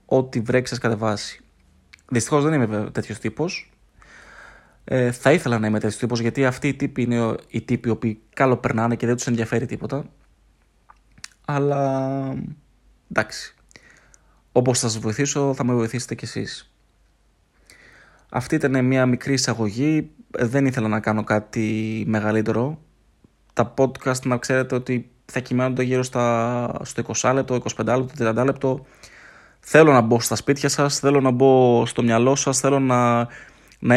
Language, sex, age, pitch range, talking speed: Greek, male, 20-39, 115-135 Hz, 145 wpm